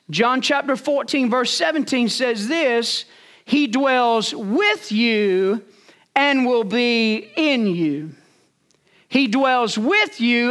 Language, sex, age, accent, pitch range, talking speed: English, male, 40-59, American, 220-275 Hz, 115 wpm